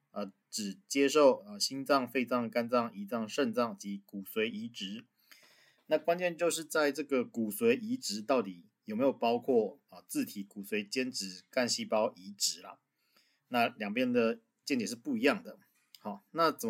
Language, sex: Chinese, male